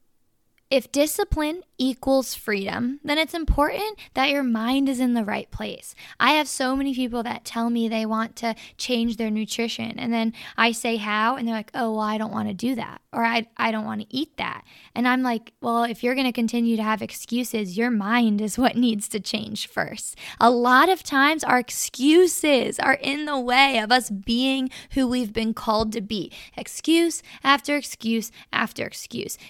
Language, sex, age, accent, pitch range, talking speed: English, female, 10-29, American, 220-265 Hz, 195 wpm